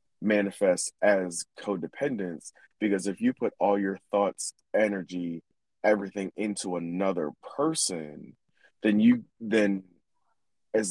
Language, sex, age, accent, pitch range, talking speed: English, male, 20-39, American, 90-110 Hz, 105 wpm